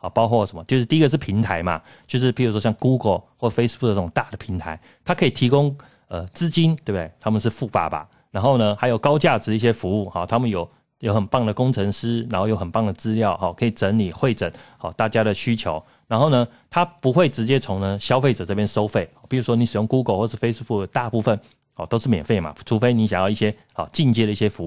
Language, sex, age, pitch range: Chinese, male, 30-49, 100-130 Hz